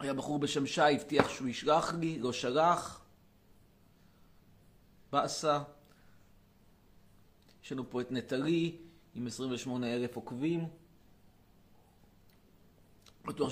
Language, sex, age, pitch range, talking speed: Hebrew, male, 30-49, 125-165 Hz, 90 wpm